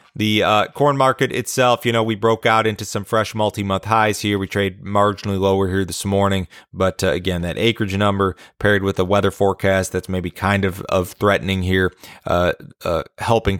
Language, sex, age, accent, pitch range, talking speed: English, male, 30-49, American, 90-105 Hz, 200 wpm